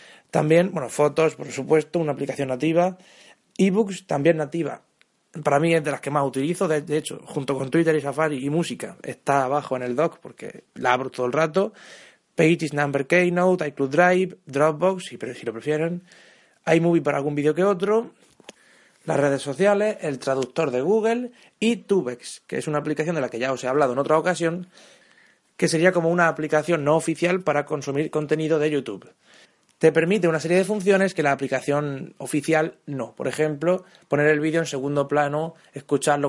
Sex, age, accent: male, 30-49, Spanish